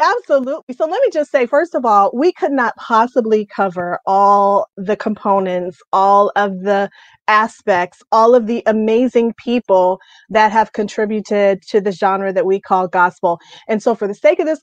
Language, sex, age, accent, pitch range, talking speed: English, female, 30-49, American, 210-265 Hz, 175 wpm